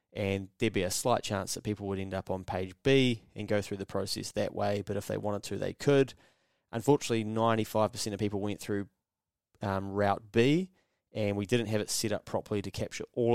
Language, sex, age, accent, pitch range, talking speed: English, male, 20-39, Australian, 100-110 Hz, 215 wpm